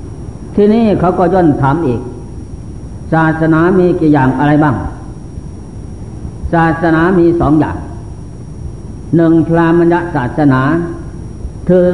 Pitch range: 130-170 Hz